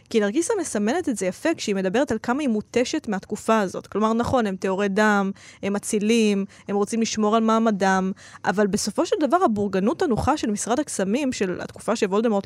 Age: 20-39